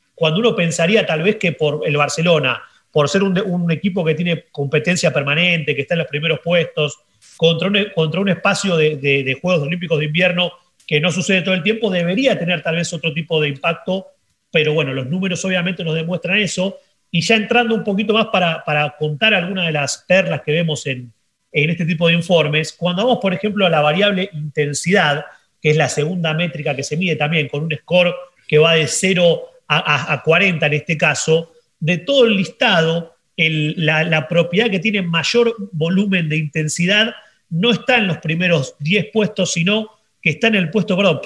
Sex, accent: male, Argentinian